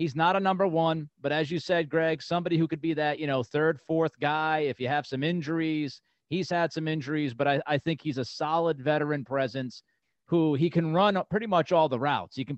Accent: American